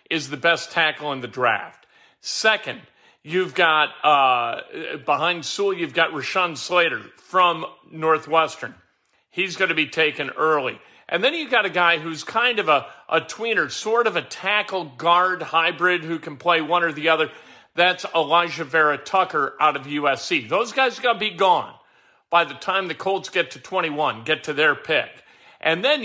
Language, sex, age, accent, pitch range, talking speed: English, male, 50-69, American, 165-215 Hz, 175 wpm